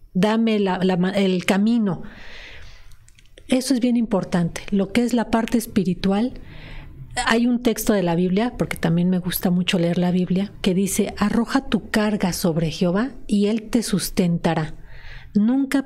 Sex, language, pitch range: female, Spanish, 180-225 Hz